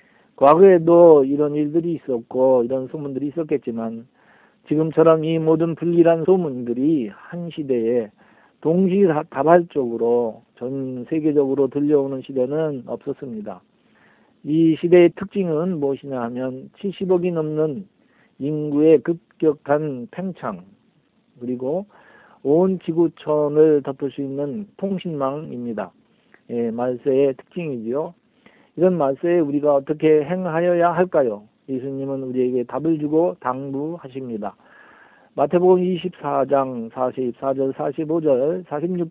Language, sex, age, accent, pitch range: Korean, male, 50-69, native, 130-165 Hz